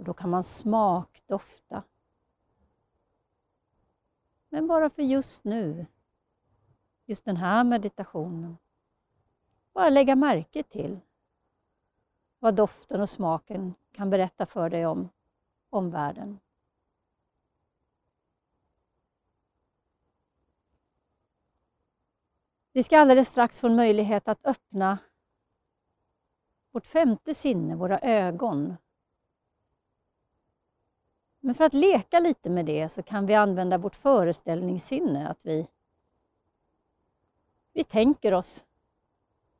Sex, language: female, Swedish